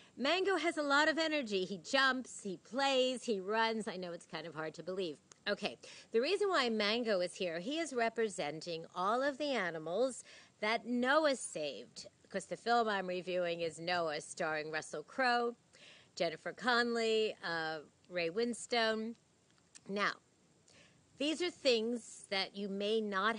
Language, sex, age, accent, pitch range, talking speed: English, female, 50-69, American, 190-285 Hz, 155 wpm